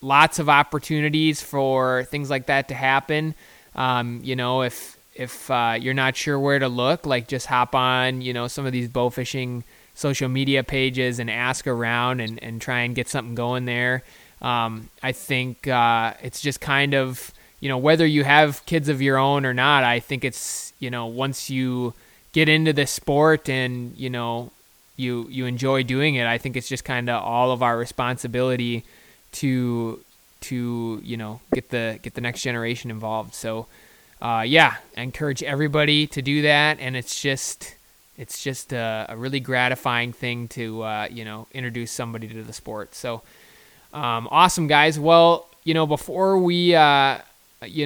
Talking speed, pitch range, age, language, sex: 180 wpm, 120-140 Hz, 20-39, English, male